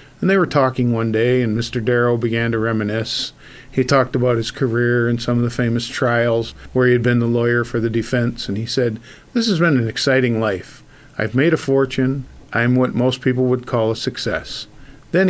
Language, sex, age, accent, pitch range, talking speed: English, male, 50-69, American, 115-135 Hz, 210 wpm